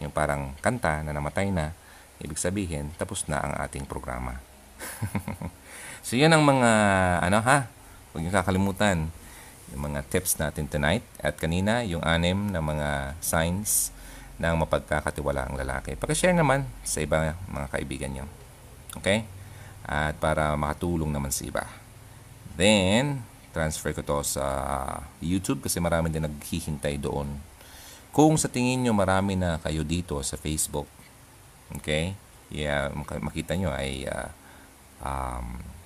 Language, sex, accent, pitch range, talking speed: Filipino, male, native, 70-90 Hz, 135 wpm